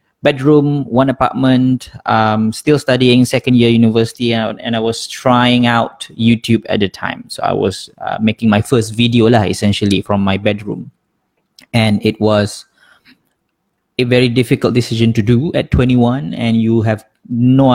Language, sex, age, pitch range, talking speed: Malay, male, 20-39, 115-130 Hz, 160 wpm